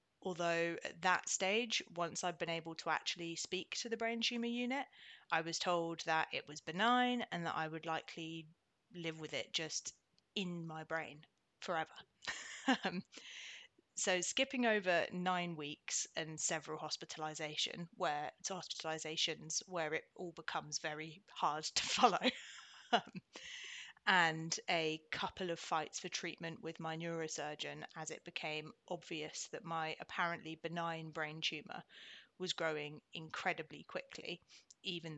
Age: 30-49